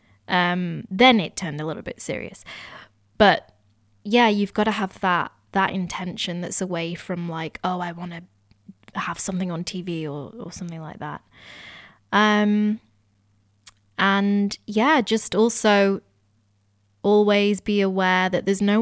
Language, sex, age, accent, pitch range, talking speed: English, female, 20-39, British, 155-210 Hz, 145 wpm